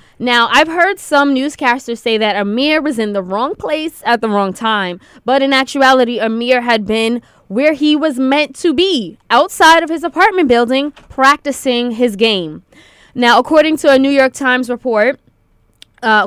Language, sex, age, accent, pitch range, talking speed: English, female, 20-39, American, 215-275 Hz, 170 wpm